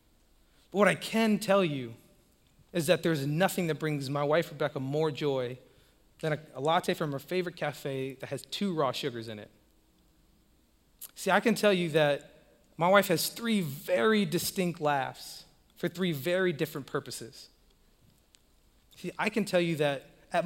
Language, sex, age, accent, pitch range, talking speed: English, male, 30-49, American, 140-185 Hz, 165 wpm